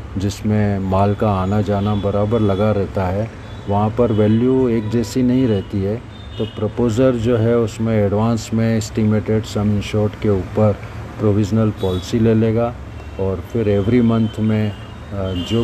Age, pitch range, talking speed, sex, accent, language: 40-59, 100-115 Hz, 150 wpm, male, native, Hindi